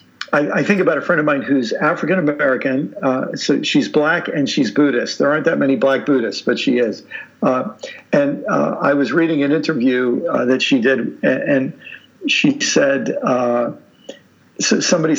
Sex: male